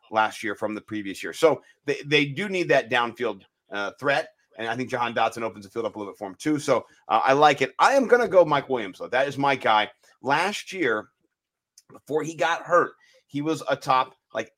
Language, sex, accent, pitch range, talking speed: English, male, American, 125-165 Hz, 235 wpm